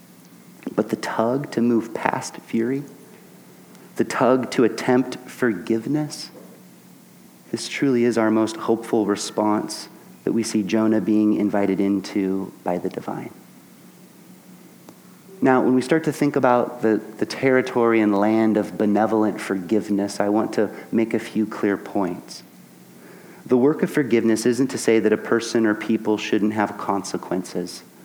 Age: 30-49